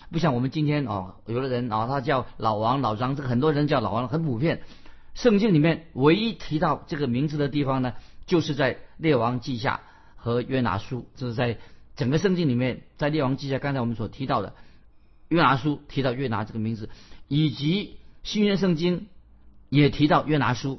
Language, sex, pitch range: Chinese, male, 115-155 Hz